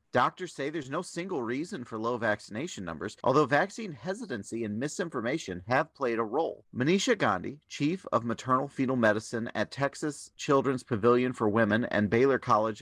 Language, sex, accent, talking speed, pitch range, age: English, male, American, 165 wpm, 110-145 Hz, 40-59